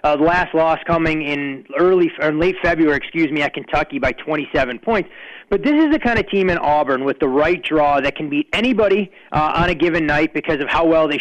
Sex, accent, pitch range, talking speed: male, American, 150-185 Hz, 235 wpm